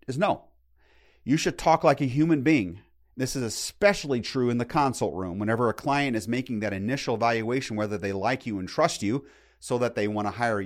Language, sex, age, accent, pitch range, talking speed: English, male, 40-59, American, 95-135 Hz, 215 wpm